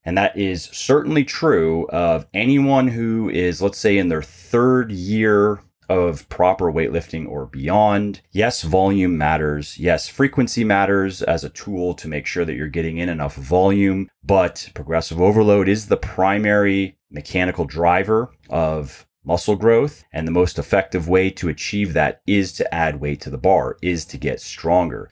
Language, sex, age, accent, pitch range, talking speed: English, male, 30-49, American, 80-100 Hz, 160 wpm